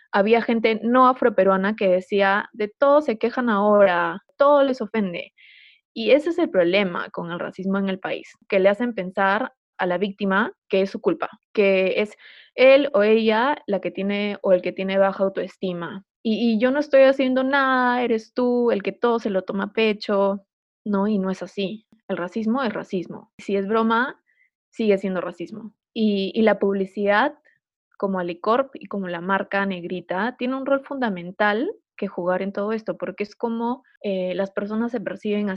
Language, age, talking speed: Spanish, 20-39, 185 wpm